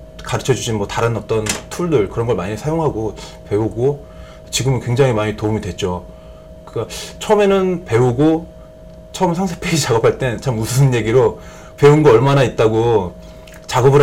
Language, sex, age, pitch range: Korean, male, 20-39, 110-145 Hz